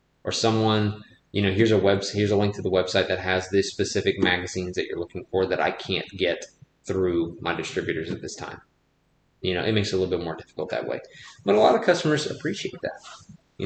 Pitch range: 95-115 Hz